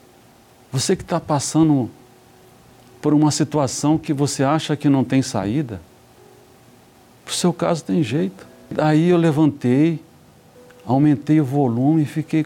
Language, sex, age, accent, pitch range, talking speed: Portuguese, male, 60-79, Brazilian, 120-155 Hz, 135 wpm